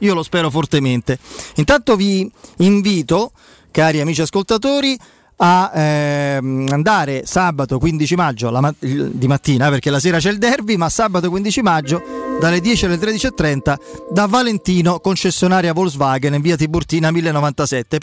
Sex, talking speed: male, 135 wpm